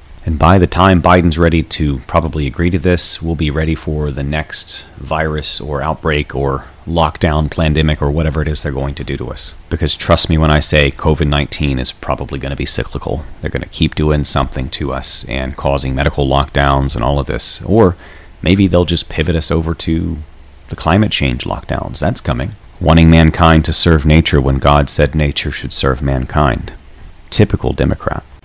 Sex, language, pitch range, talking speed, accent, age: male, English, 75-90 Hz, 190 wpm, American, 30-49